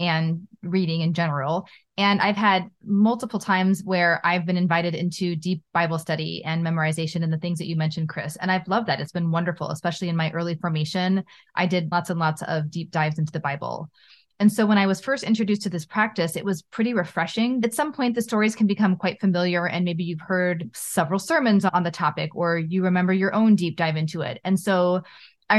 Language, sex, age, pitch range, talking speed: English, female, 20-39, 170-215 Hz, 220 wpm